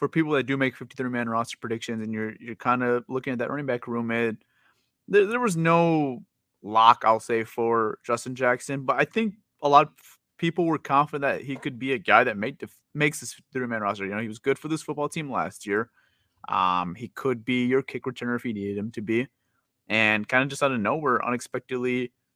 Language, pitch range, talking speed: English, 110-135 Hz, 235 wpm